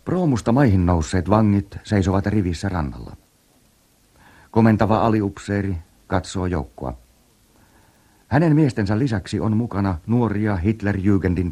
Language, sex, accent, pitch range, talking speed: Finnish, male, native, 90-110 Hz, 95 wpm